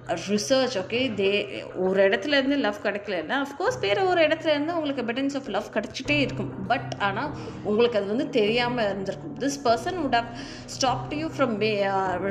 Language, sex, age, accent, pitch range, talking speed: Tamil, female, 20-39, native, 195-265 Hz, 165 wpm